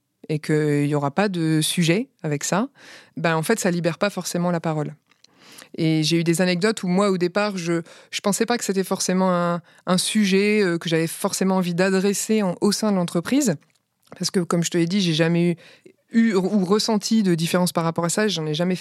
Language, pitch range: French, 165-205 Hz